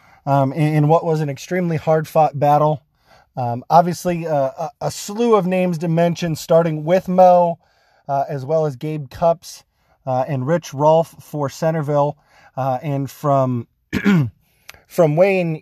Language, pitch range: English, 135-160 Hz